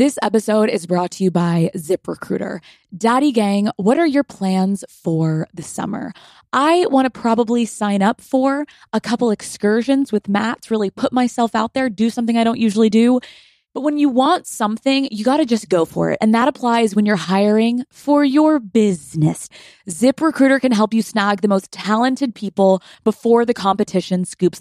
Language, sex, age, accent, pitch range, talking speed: English, female, 20-39, American, 190-240 Hz, 180 wpm